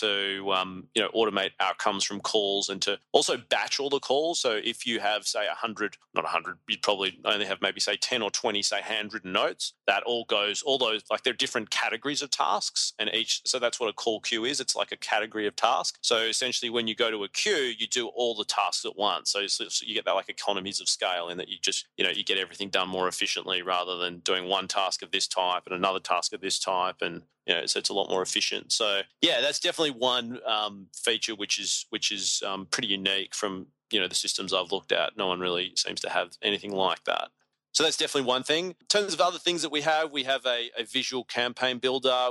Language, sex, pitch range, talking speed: English, male, 105-125 Hz, 250 wpm